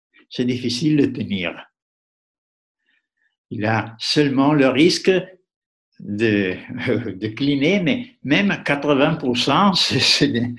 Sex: male